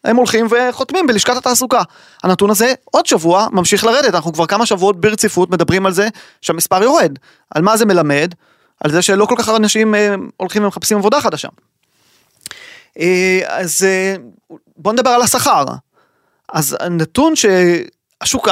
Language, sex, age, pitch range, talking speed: Hebrew, male, 30-49, 180-230 Hz, 145 wpm